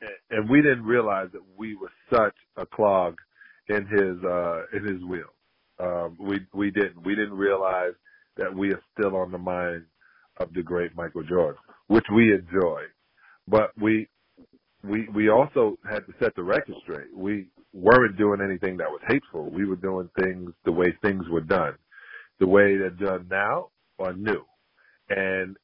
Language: English